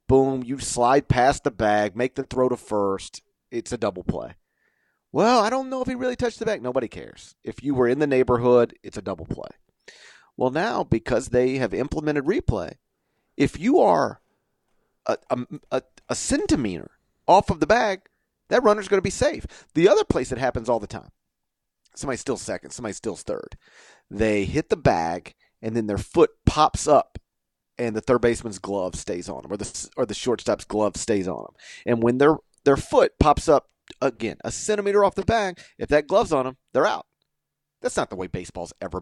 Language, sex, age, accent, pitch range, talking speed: English, male, 40-59, American, 115-185 Hz, 195 wpm